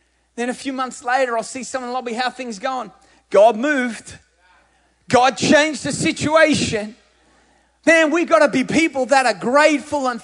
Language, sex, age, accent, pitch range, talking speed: English, male, 30-49, Australian, 180-245 Hz, 160 wpm